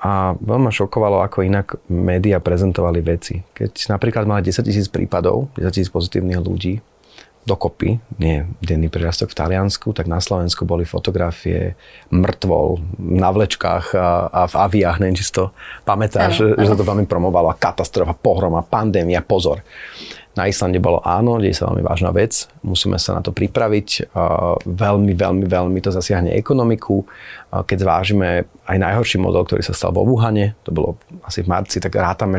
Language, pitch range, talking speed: Slovak, 90-105 Hz, 165 wpm